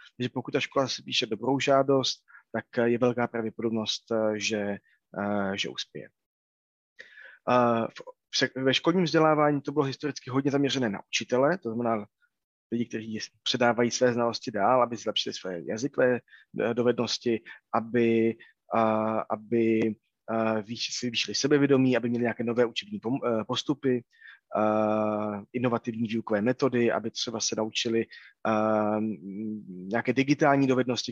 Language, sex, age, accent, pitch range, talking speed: Czech, male, 20-39, native, 110-130 Hz, 120 wpm